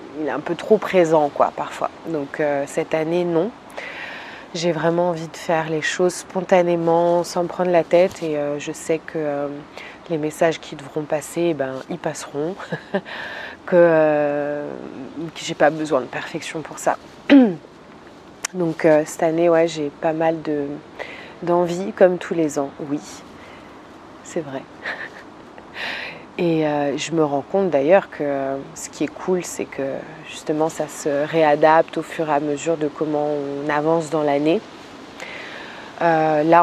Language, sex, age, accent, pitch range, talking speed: French, female, 20-39, French, 150-175 Hz, 160 wpm